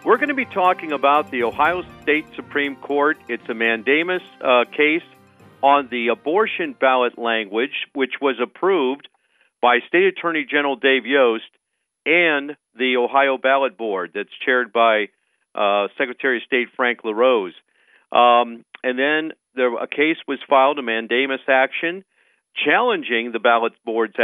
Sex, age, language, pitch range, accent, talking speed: male, 50-69, English, 120-150 Hz, American, 145 wpm